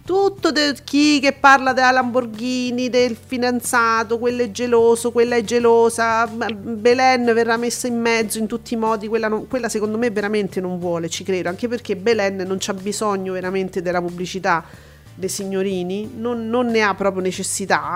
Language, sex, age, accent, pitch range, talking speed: Italian, female, 40-59, native, 200-245 Hz, 170 wpm